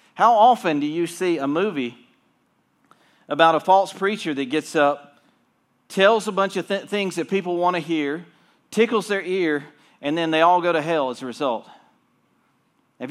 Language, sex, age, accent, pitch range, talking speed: English, male, 40-59, American, 125-175 Hz, 175 wpm